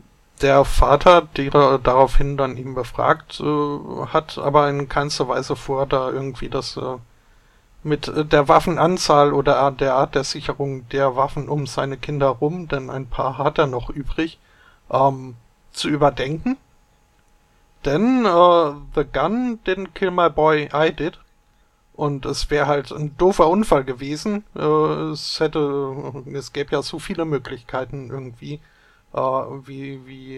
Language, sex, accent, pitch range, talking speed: German, male, German, 135-155 Hz, 140 wpm